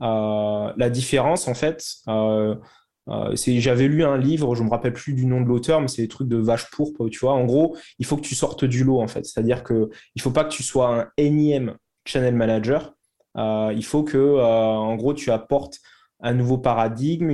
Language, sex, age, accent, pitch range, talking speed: French, male, 20-39, French, 115-140 Hz, 225 wpm